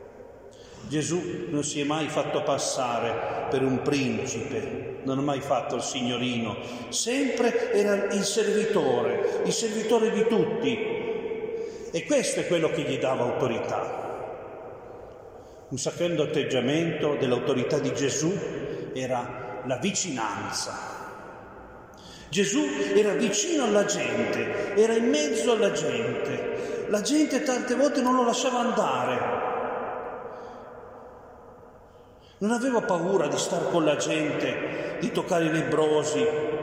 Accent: native